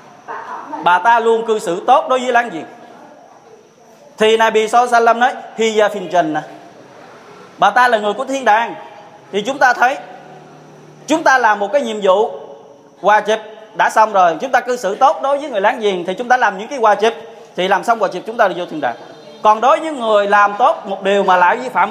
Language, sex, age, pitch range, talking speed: Vietnamese, male, 20-39, 185-235 Hz, 215 wpm